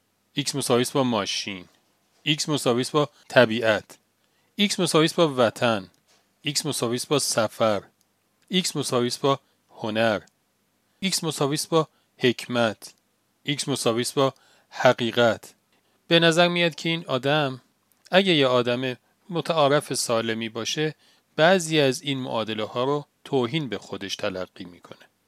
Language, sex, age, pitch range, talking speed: Persian, male, 40-59, 115-150 Hz, 120 wpm